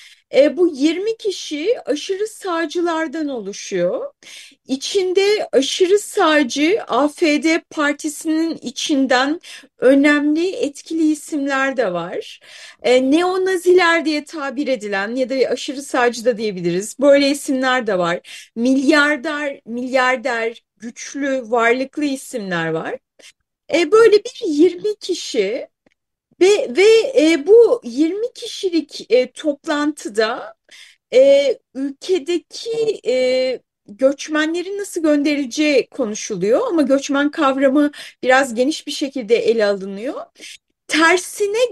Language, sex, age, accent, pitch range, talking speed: Turkish, female, 30-49, native, 265-380 Hz, 100 wpm